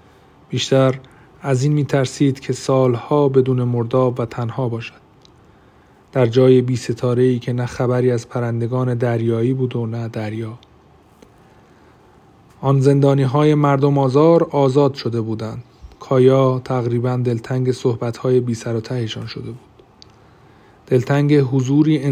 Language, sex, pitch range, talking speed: Persian, male, 125-140 Hz, 130 wpm